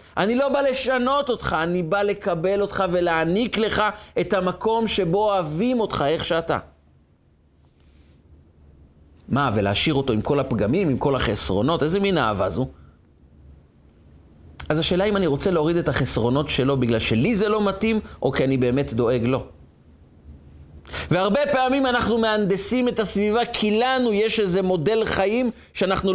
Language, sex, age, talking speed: Hebrew, male, 40-59, 150 wpm